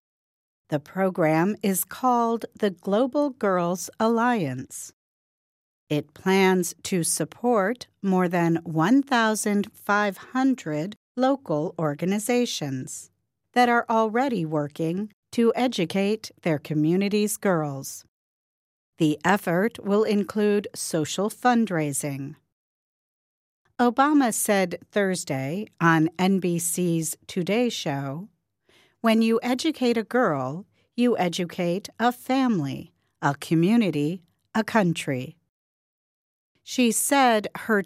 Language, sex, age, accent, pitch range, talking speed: English, female, 50-69, American, 160-225 Hz, 85 wpm